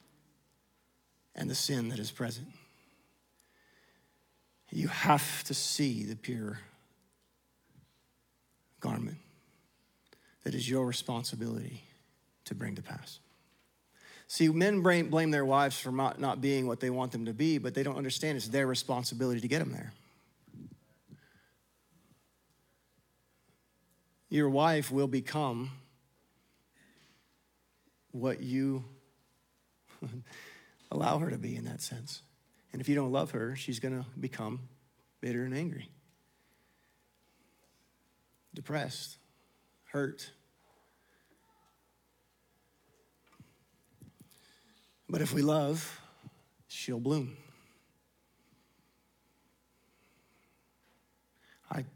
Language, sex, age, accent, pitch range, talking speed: English, male, 40-59, American, 120-140 Hz, 95 wpm